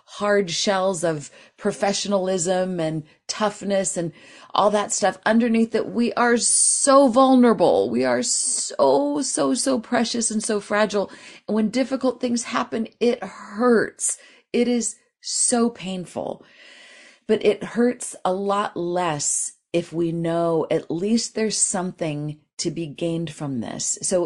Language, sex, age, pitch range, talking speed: English, female, 40-59, 155-215 Hz, 135 wpm